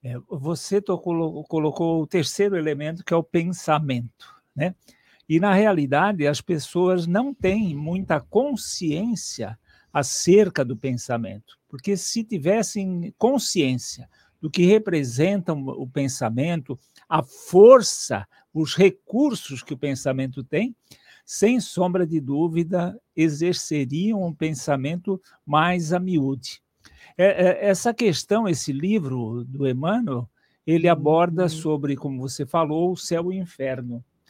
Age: 60-79